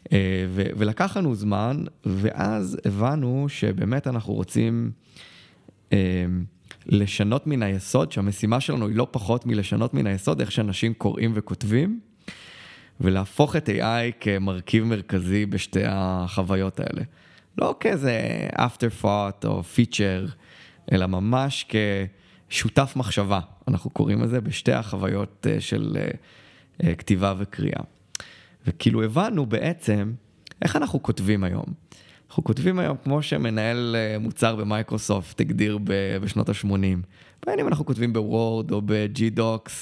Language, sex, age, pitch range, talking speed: Hebrew, male, 20-39, 100-125 Hz, 110 wpm